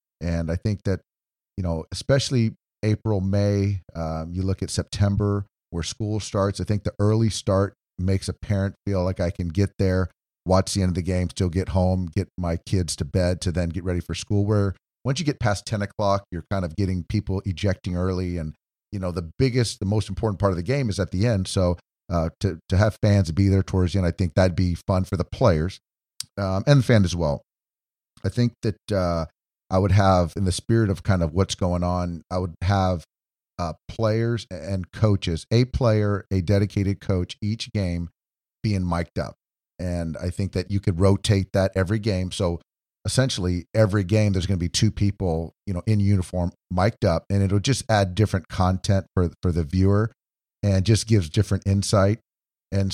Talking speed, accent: 205 wpm, American